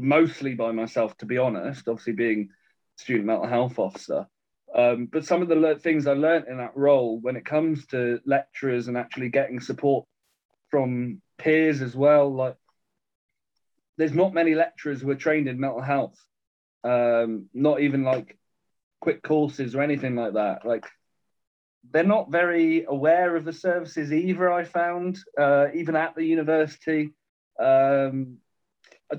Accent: British